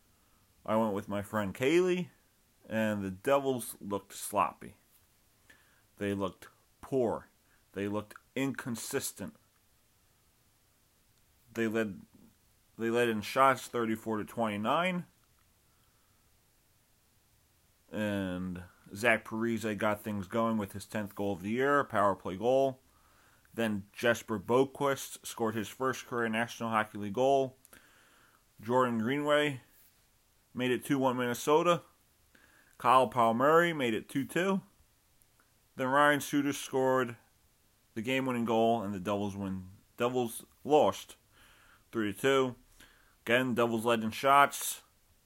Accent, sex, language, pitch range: American, male, English, 105-130 Hz